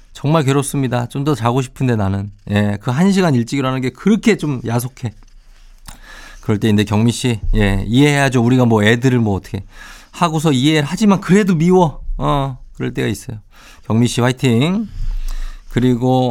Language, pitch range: Korean, 100-140 Hz